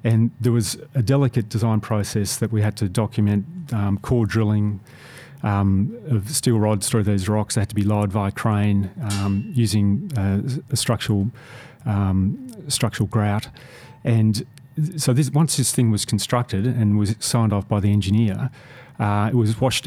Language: English